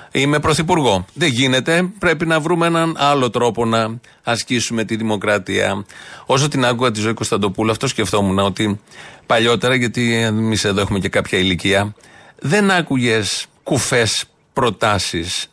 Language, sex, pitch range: Greek, male, 110-155 Hz